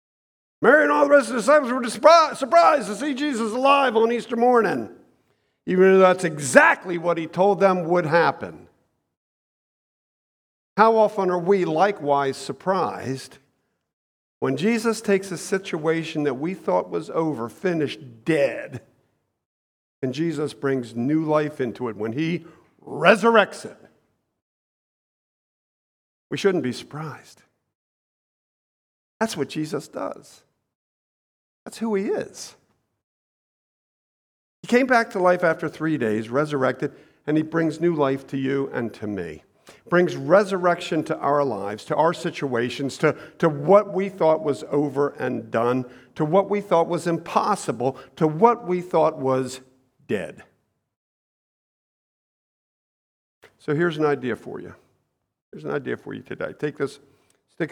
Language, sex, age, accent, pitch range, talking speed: English, male, 50-69, American, 140-195 Hz, 135 wpm